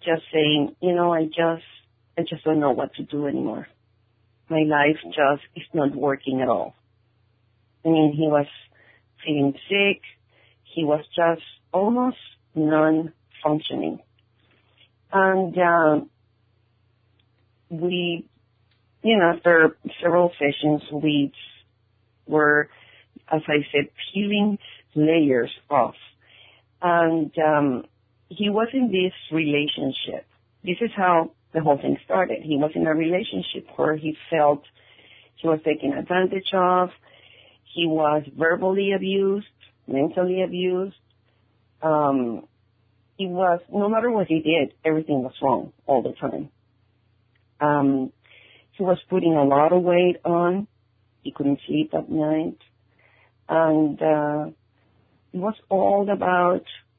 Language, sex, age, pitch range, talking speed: English, female, 40-59, 115-170 Hz, 125 wpm